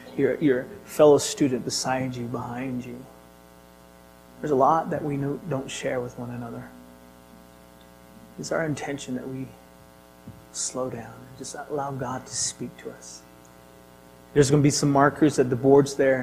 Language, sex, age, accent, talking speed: English, male, 30-49, American, 165 wpm